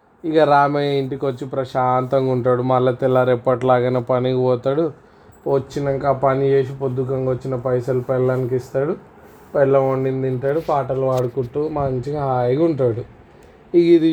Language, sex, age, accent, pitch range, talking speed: Telugu, male, 20-39, native, 125-140 Hz, 125 wpm